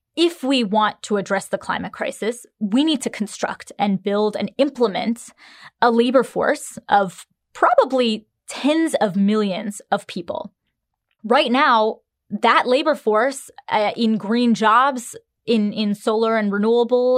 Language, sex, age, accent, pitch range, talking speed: English, female, 20-39, American, 205-255 Hz, 140 wpm